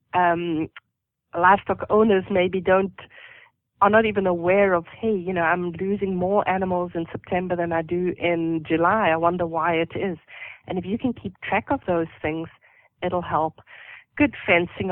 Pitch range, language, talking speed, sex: 170-200 Hz, English, 170 wpm, female